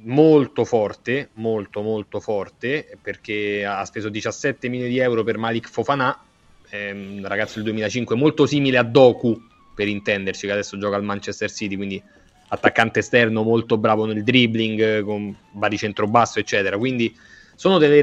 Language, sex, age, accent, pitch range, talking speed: Italian, male, 30-49, native, 110-140 Hz, 155 wpm